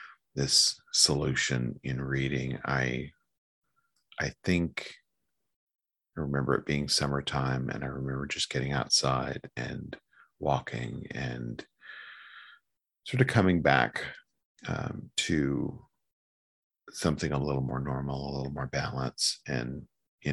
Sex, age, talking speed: male, 40-59, 110 wpm